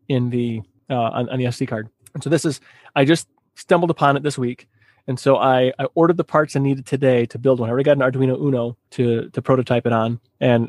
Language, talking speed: English, 245 wpm